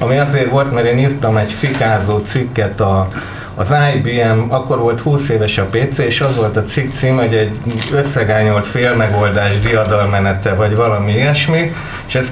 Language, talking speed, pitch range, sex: Hungarian, 160 wpm, 110-130 Hz, male